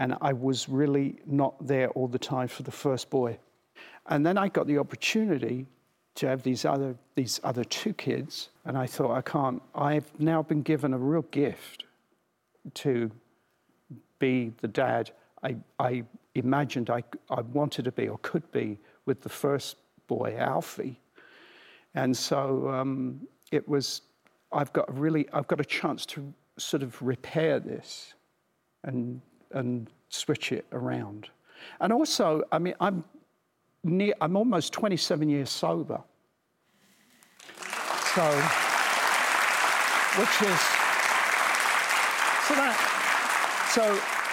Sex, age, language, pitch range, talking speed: male, 50-69, English, 125-150 Hz, 135 wpm